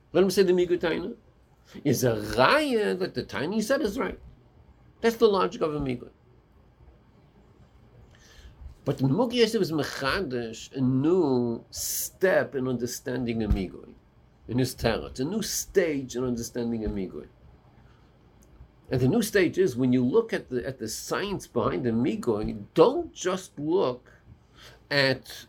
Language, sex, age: English, male, 60-79